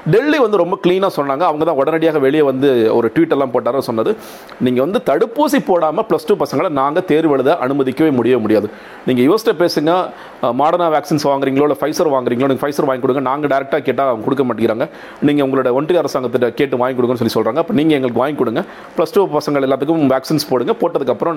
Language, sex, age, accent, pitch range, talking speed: Tamil, male, 40-59, native, 130-170 Hz, 190 wpm